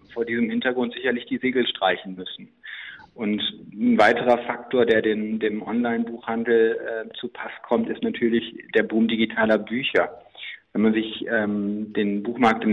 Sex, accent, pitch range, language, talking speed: male, German, 110-125 Hz, German, 145 wpm